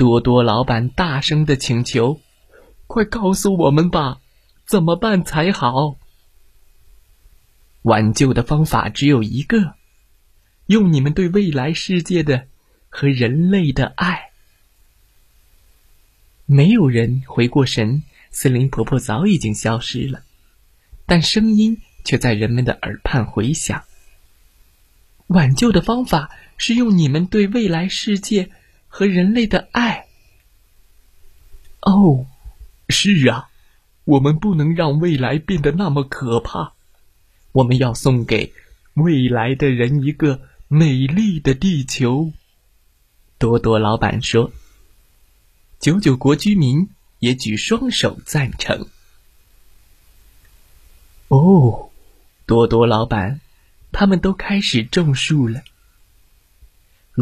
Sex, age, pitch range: male, 20-39, 100-170 Hz